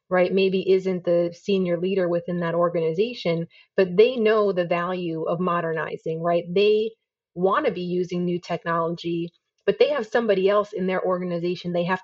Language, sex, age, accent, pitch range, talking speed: English, female, 30-49, American, 175-200 Hz, 170 wpm